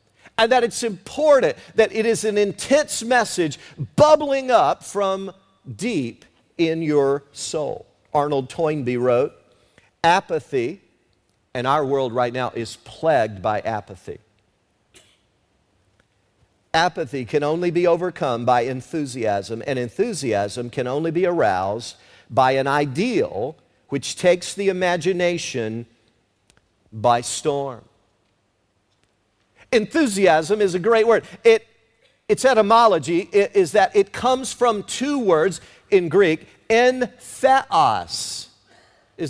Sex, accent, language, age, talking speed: male, American, English, 50-69, 105 wpm